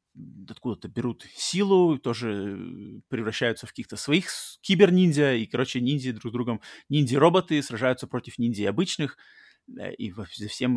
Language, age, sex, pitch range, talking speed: Russian, 20-39, male, 110-140 Hz, 130 wpm